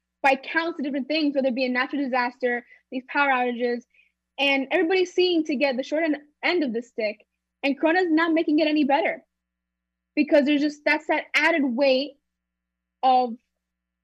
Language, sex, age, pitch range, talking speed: English, female, 10-29, 235-285 Hz, 170 wpm